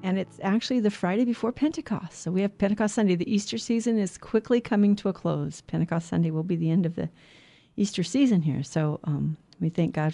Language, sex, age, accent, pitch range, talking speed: English, female, 40-59, American, 160-210 Hz, 220 wpm